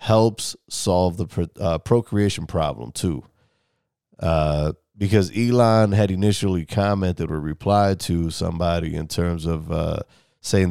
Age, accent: 30-49, American